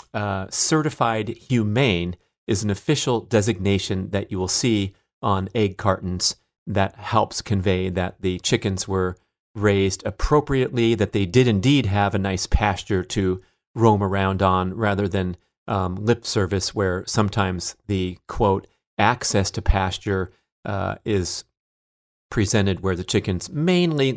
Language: English